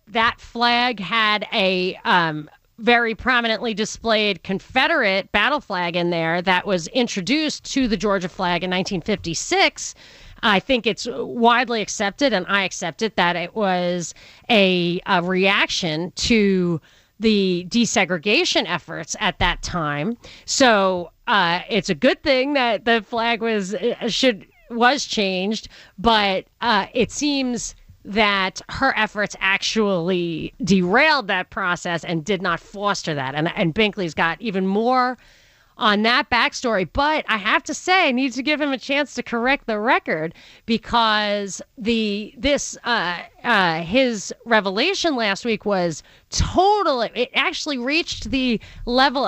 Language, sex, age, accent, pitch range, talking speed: English, female, 40-59, American, 185-245 Hz, 140 wpm